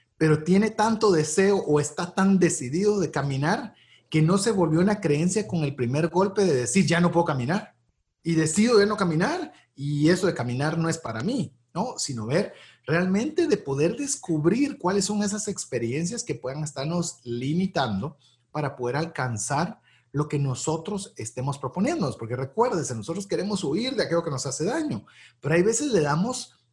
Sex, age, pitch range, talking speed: male, 40-59, 130-190 Hz, 175 wpm